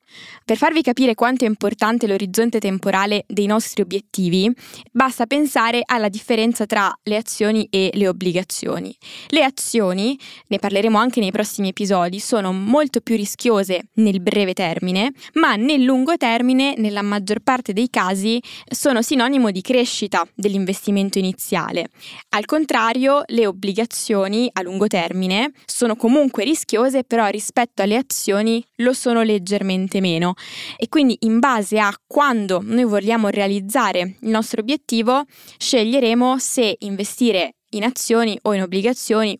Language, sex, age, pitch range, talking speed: Italian, female, 20-39, 200-240 Hz, 135 wpm